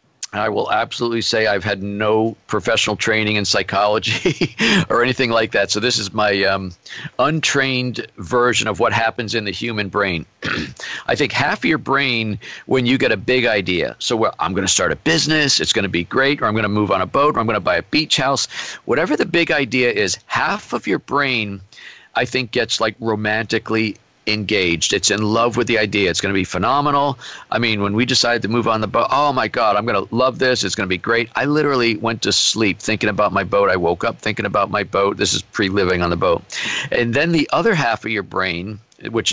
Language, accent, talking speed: English, American, 230 wpm